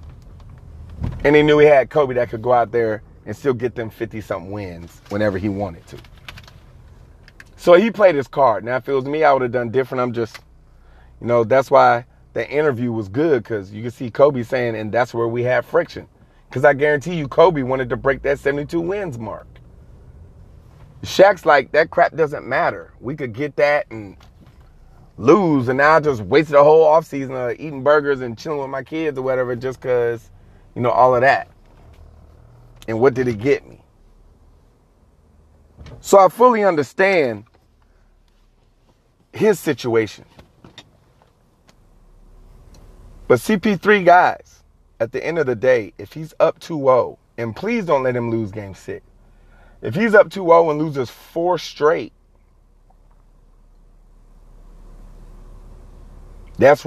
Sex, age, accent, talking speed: male, 30-49, American, 155 wpm